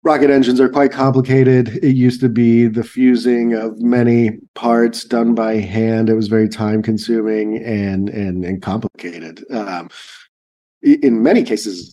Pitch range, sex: 100-125 Hz, male